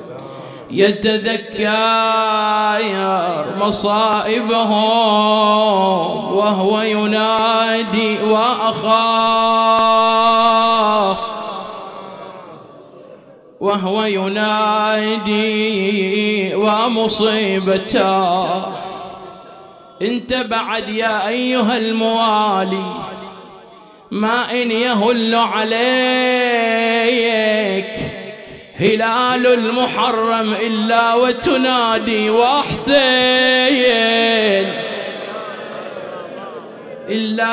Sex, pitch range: male, 210-230 Hz